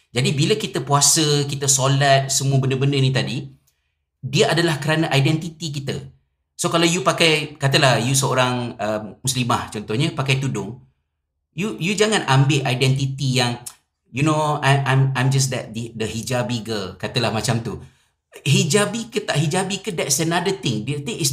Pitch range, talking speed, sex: 115-150 Hz, 160 wpm, male